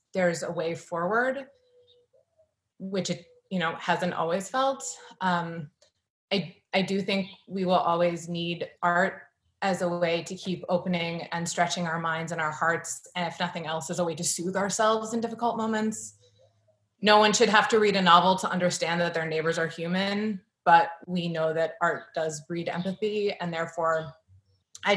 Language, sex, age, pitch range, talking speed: English, female, 20-39, 165-195 Hz, 170 wpm